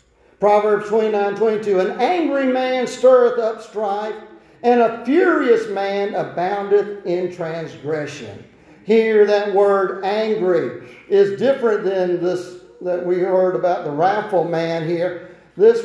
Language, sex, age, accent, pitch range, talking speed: English, male, 50-69, American, 165-230 Hz, 120 wpm